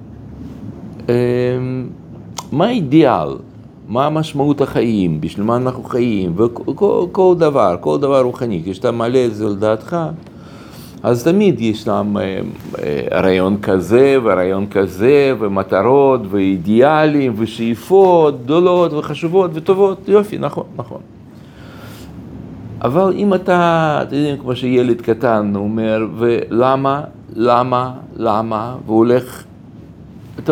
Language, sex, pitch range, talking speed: Hebrew, male, 110-160 Hz, 105 wpm